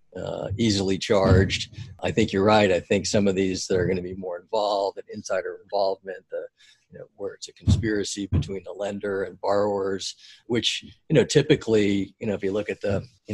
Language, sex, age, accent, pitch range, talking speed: English, male, 50-69, American, 95-115 Hz, 205 wpm